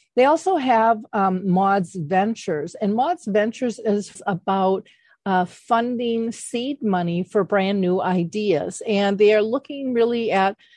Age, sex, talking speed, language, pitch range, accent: 50-69, female, 140 wpm, English, 190-225 Hz, American